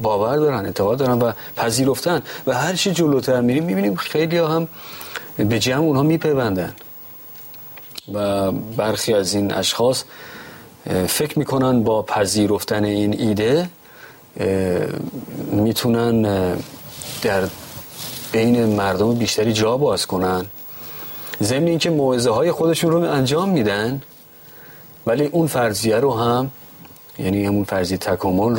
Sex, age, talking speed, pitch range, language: male, 30-49, 115 wpm, 100-140 Hz, Persian